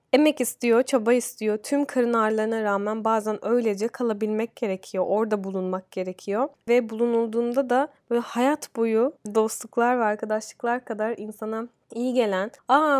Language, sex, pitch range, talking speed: Turkish, female, 220-260 Hz, 135 wpm